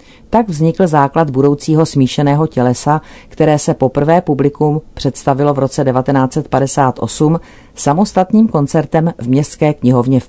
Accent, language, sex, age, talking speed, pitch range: native, Czech, female, 40-59, 115 wpm, 125-150 Hz